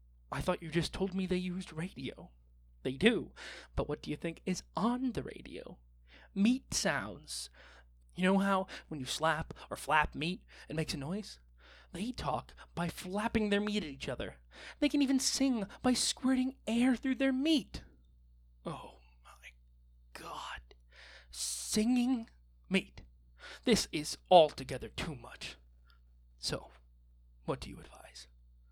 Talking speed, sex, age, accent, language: 145 wpm, male, 20-39, American, English